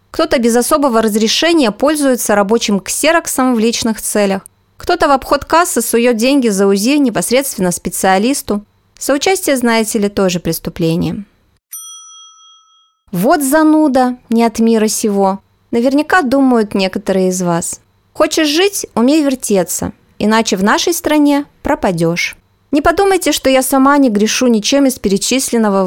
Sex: female